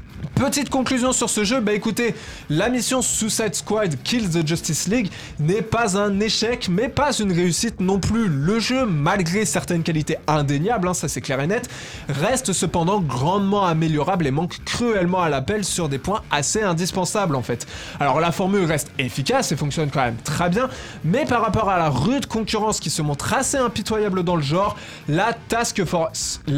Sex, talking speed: male, 185 wpm